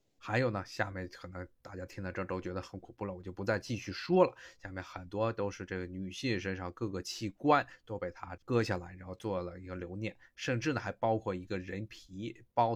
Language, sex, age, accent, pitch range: Chinese, male, 20-39, native, 100-130 Hz